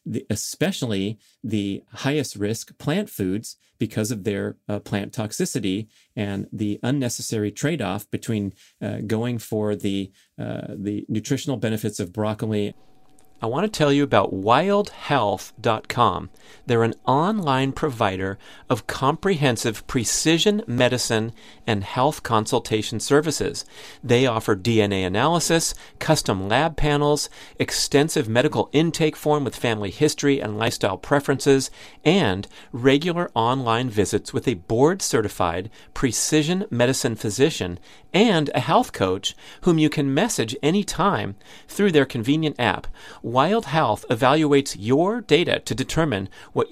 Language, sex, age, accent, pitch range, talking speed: English, male, 40-59, American, 110-150 Hz, 120 wpm